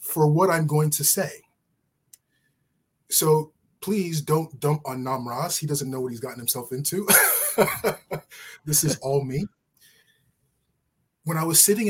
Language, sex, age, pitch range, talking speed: English, male, 30-49, 135-165 Hz, 140 wpm